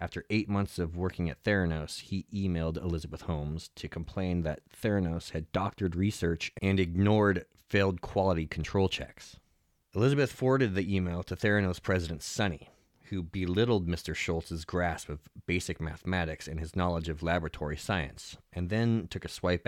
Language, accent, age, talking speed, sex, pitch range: English, American, 30-49, 155 wpm, male, 80-95 Hz